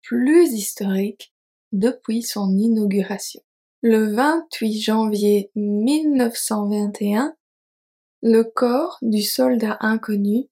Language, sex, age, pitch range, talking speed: French, female, 20-39, 210-250 Hz, 80 wpm